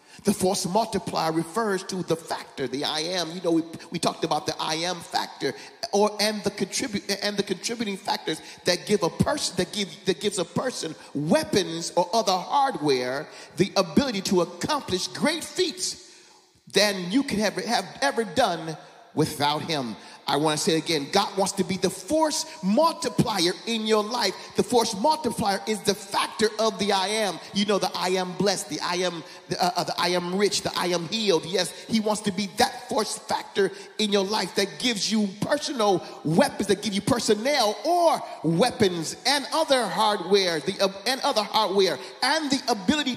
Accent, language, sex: American, English, male